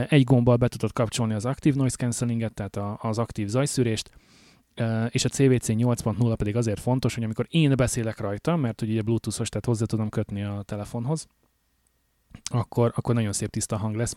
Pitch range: 110-125 Hz